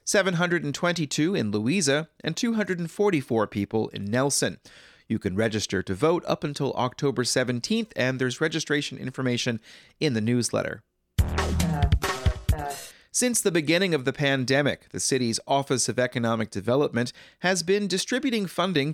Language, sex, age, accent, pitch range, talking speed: English, male, 30-49, American, 120-160 Hz, 125 wpm